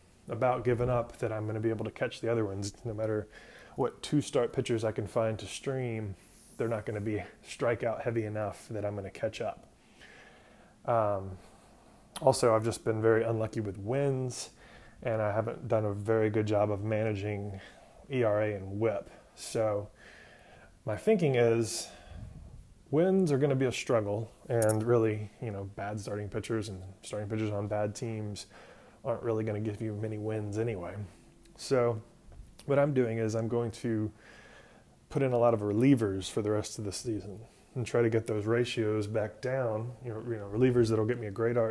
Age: 20-39